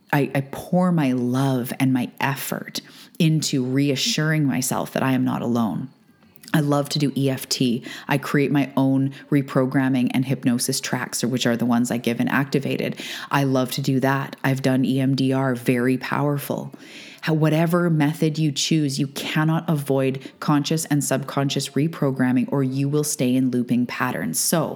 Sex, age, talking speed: female, 30-49, 160 wpm